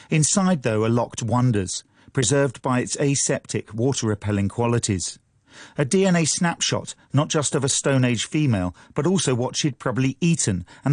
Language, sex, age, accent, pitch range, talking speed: English, male, 40-59, British, 100-145 Hz, 155 wpm